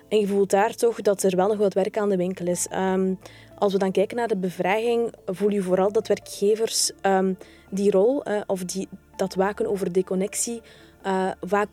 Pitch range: 190-215 Hz